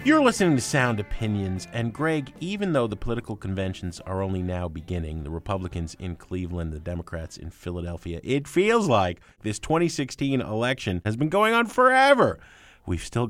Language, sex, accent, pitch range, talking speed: English, male, American, 90-135 Hz, 165 wpm